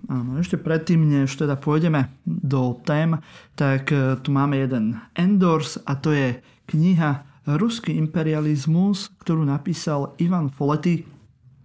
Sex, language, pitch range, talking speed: male, Slovak, 135-160 Hz, 125 wpm